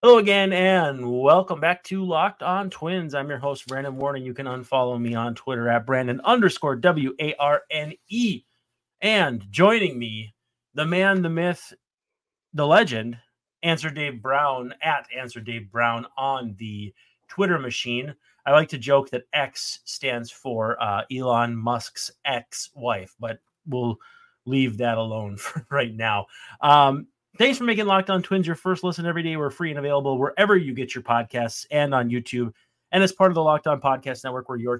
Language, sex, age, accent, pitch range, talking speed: English, male, 30-49, American, 120-170 Hz, 170 wpm